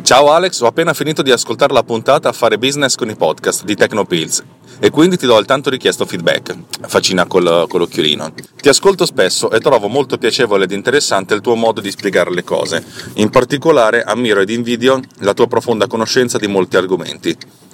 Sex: male